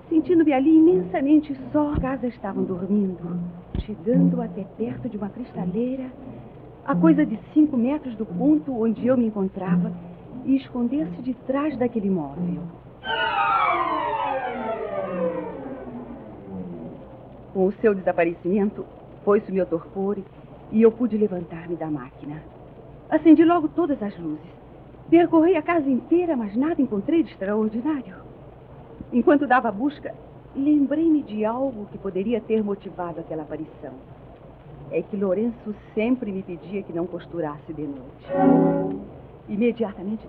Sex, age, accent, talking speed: female, 40-59, Brazilian, 125 wpm